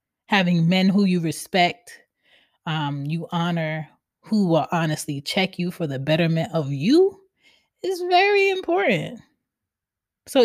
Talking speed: 125 wpm